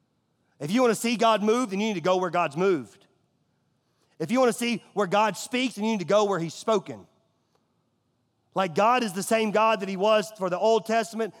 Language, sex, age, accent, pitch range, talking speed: English, male, 40-59, American, 155-210 Hz, 230 wpm